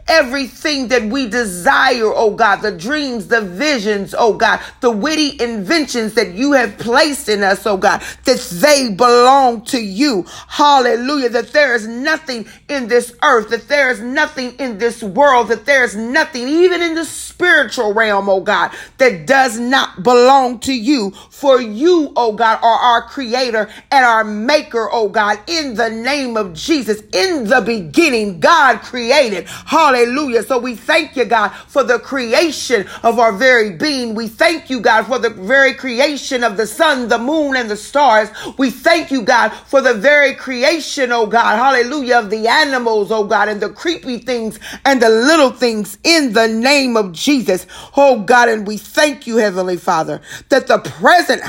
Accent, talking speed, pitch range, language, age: American, 175 wpm, 225-280 Hz, English, 40-59